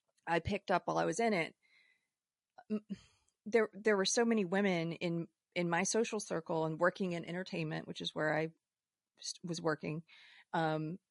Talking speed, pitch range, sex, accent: 160 wpm, 155-190 Hz, female, American